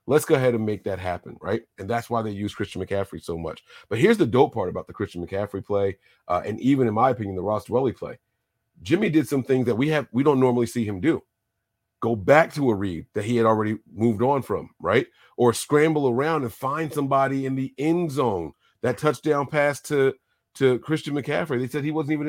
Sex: male